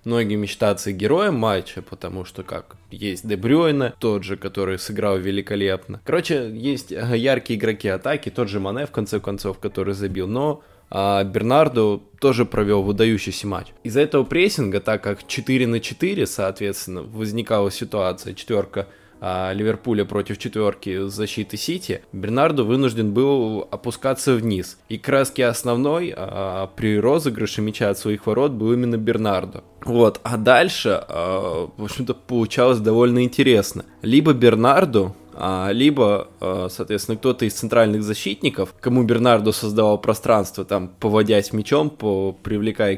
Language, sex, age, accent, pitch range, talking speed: Russian, male, 20-39, native, 100-125 Hz, 125 wpm